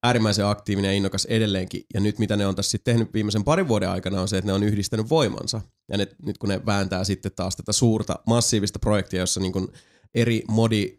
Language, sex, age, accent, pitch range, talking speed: Finnish, male, 30-49, native, 100-115 Hz, 220 wpm